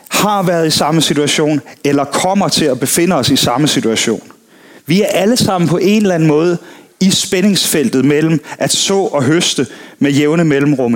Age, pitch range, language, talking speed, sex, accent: 30-49, 145-190 Hz, Danish, 180 wpm, male, native